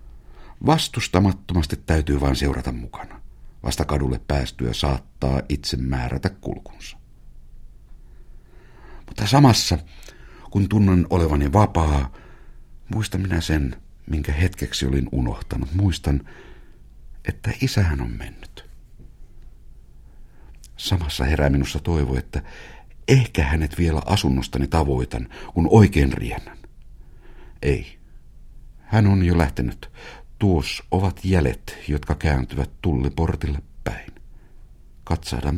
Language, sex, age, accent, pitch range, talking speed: Finnish, male, 60-79, native, 70-90 Hz, 95 wpm